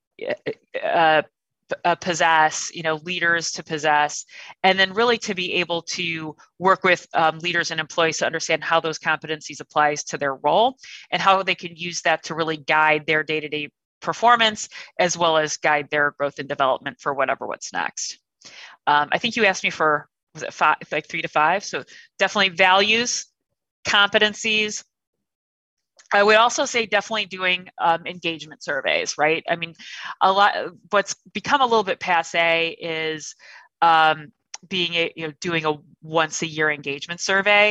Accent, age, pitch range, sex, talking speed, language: American, 30-49, 155-185 Hz, female, 165 wpm, English